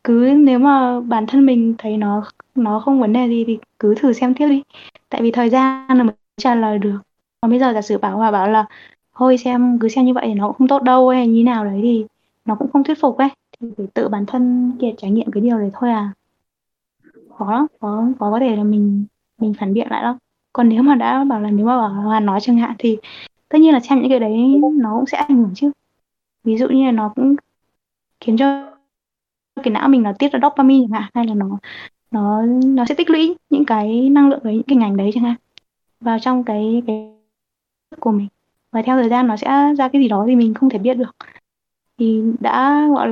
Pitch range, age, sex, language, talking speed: 220-265 Hz, 20-39, female, Vietnamese, 240 wpm